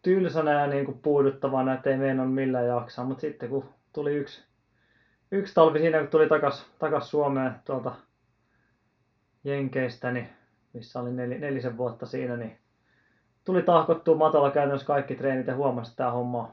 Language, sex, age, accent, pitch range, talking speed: Finnish, male, 20-39, native, 120-140 Hz, 150 wpm